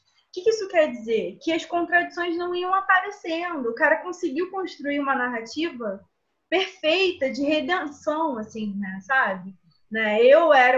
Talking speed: 150 wpm